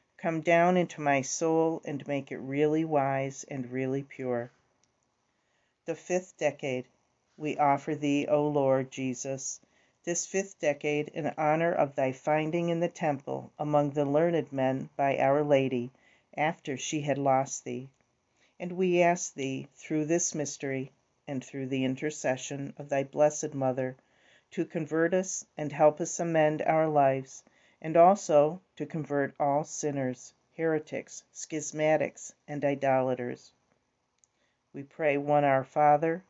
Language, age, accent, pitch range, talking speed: English, 50-69, American, 135-160 Hz, 140 wpm